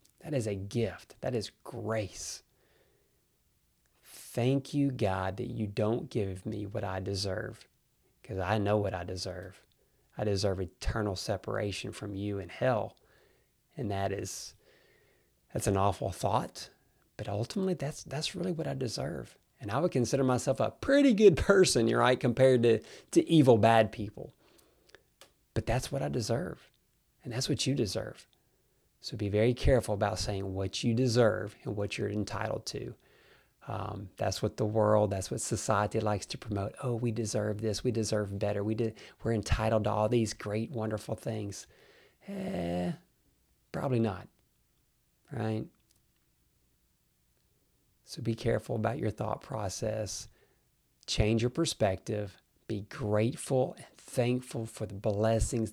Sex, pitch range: male, 100-125 Hz